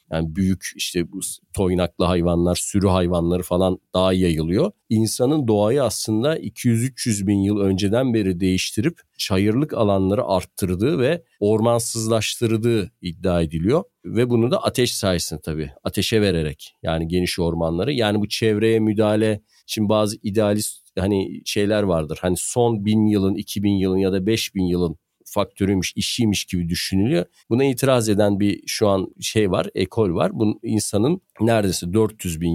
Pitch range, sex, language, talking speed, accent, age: 95-115 Hz, male, Turkish, 145 wpm, native, 40-59